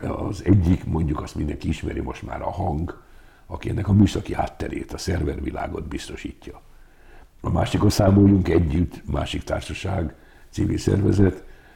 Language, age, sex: Hungarian, 60-79, male